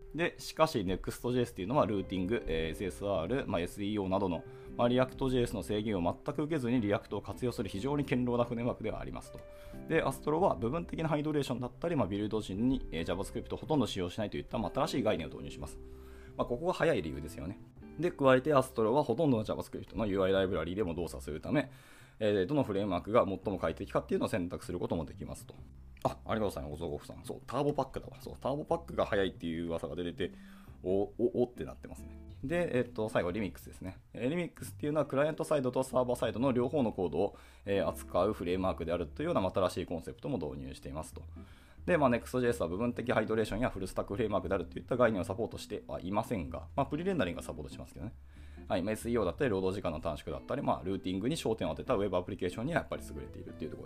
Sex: male